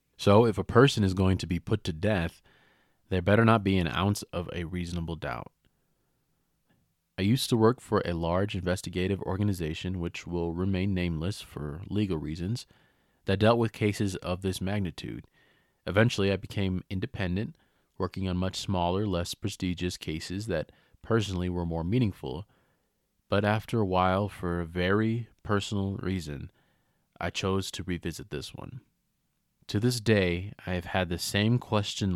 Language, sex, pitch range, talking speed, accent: English, male, 90-110 Hz, 155 wpm, American